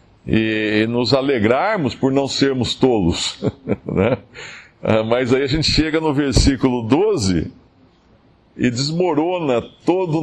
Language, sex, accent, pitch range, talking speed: Portuguese, male, Brazilian, 105-140 Hz, 110 wpm